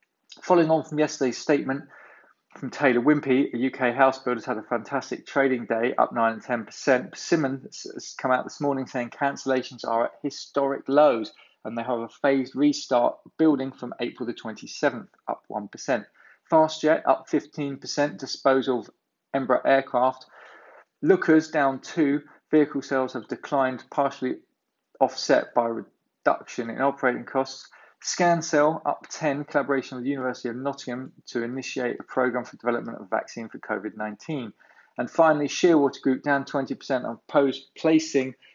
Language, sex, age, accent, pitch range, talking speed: English, male, 20-39, British, 125-145 Hz, 145 wpm